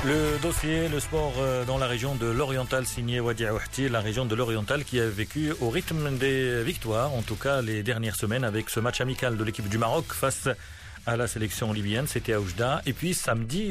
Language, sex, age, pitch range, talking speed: Arabic, male, 40-59, 110-140 Hz, 205 wpm